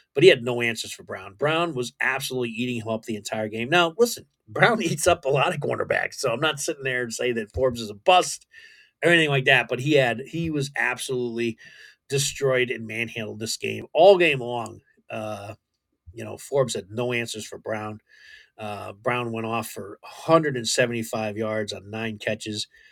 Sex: male